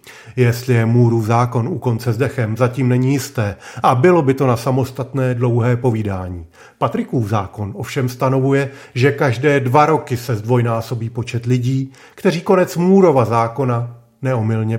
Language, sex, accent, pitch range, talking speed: Czech, male, native, 115-145 Hz, 140 wpm